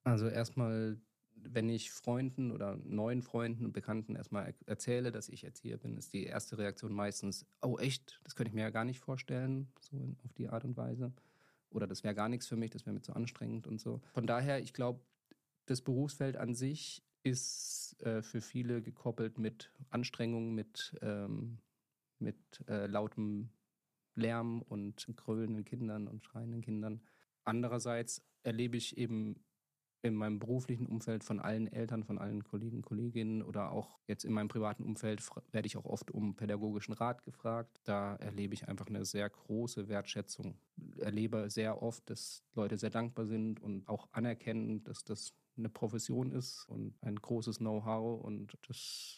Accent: German